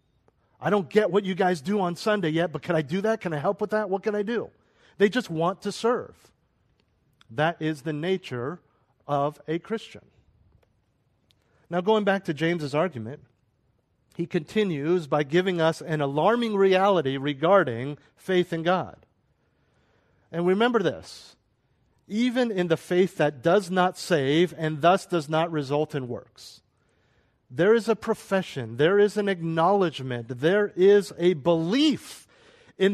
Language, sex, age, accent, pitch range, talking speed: English, male, 50-69, American, 135-195 Hz, 155 wpm